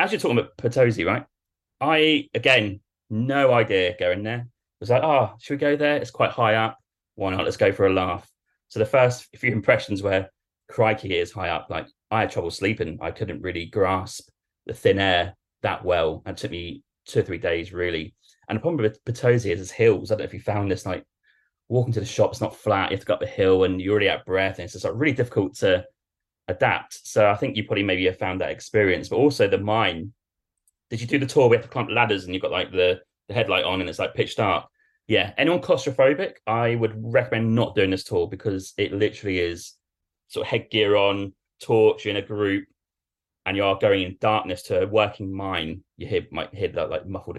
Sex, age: male, 30-49